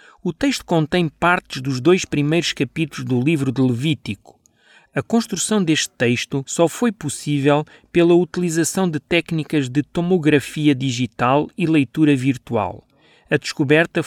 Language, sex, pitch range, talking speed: Portuguese, male, 135-165 Hz, 130 wpm